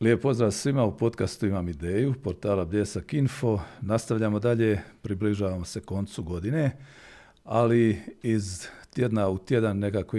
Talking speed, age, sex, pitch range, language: 130 wpm, 50-69, male, 95-120 Hz, Croatian